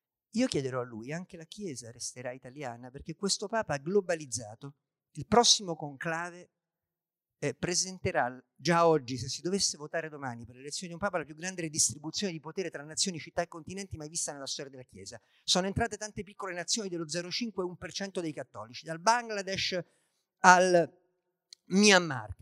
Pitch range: 145-195 Hz